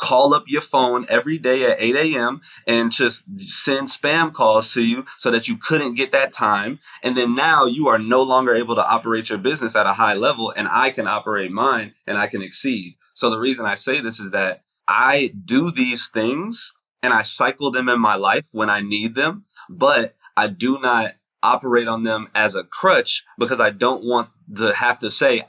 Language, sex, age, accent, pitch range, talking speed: English, male, 30-49, American, 105-135 Hz, 210 wpm